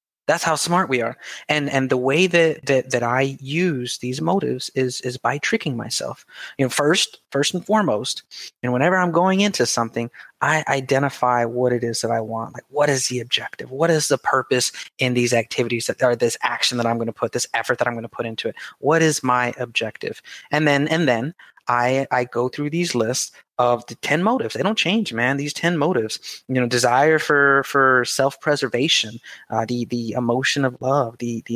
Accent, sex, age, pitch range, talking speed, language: American, male, 30-49, 120-150 Hz, 215 wpm, English